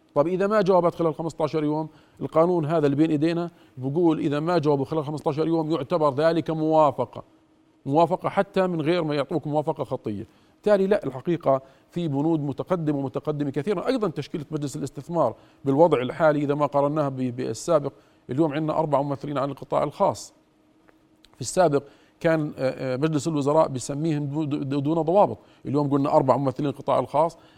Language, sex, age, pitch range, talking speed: Arabic, male, 50-69, 135-160 Hz, 150 wpm